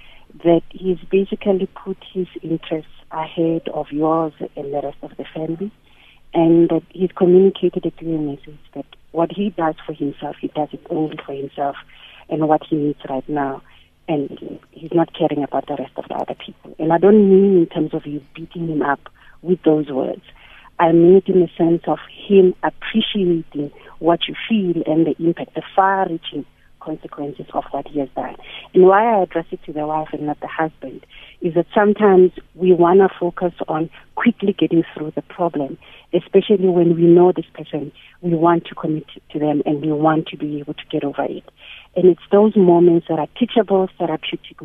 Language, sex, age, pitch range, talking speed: English, female, 40-59, 155-185 Hz, 190 wpm